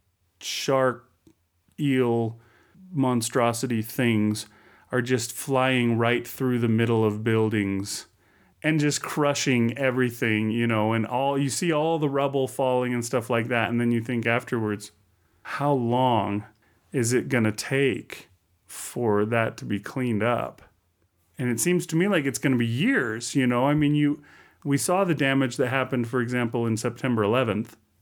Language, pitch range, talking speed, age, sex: English, 105-135 Hz, 165 wpm, 30-49, male